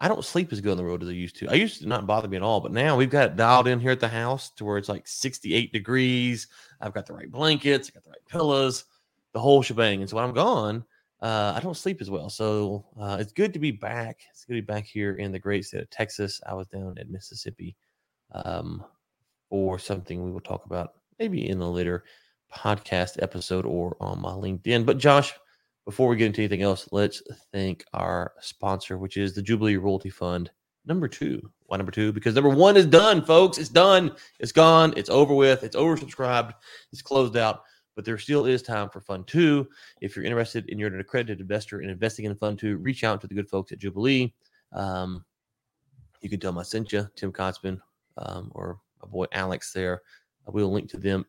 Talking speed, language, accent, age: 225 wpm, English, American, 30-49